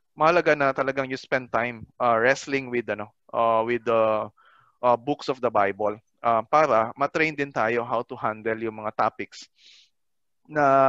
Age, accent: 20-39, native